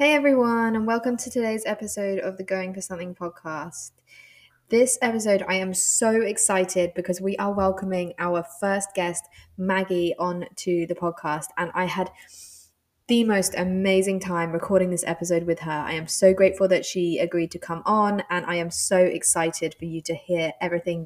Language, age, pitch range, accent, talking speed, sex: English, 10-29, 175-205 Hz, British, 180 wpm, female